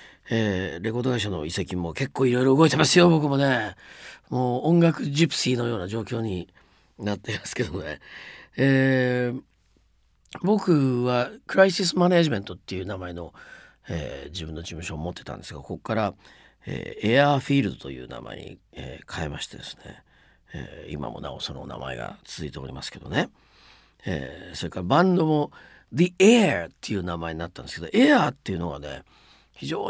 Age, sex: 50-69, male